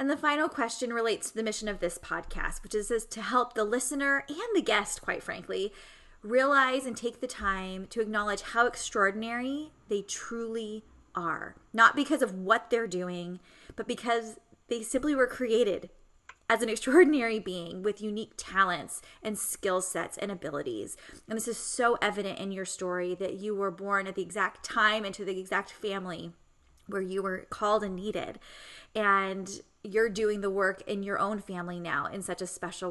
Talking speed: 180 wpm